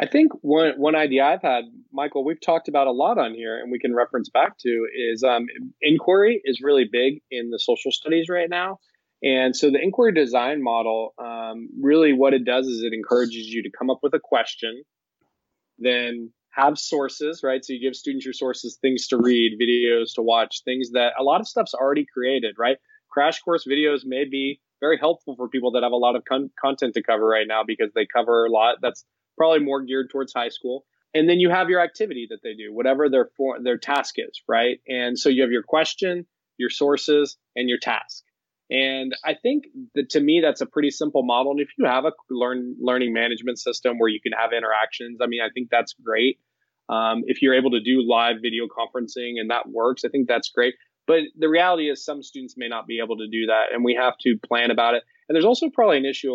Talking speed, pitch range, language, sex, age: 225 wpm, 120-150 Hz, English, male, 20-39